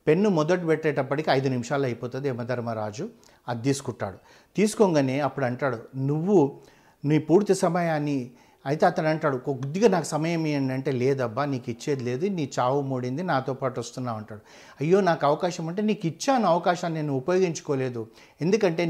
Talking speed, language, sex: 135 wpm, Telugu, male